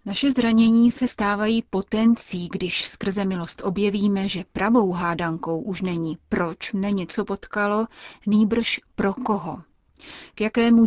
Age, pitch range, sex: 30-49, 180-210 Hz, female